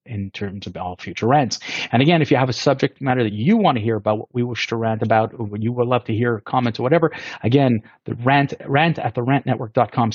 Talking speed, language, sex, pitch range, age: 250 wpm, English, male, 110-145 Hz, 40-59